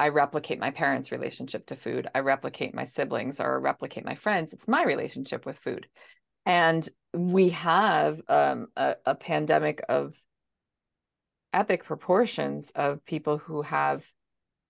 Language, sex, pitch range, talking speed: English, female, 165-205 Hz, 140 wpm